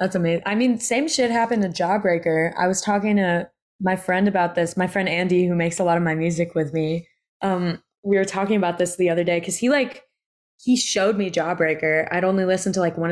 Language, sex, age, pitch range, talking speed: English, female, 20-39, 165-200 Hz, 235 wpm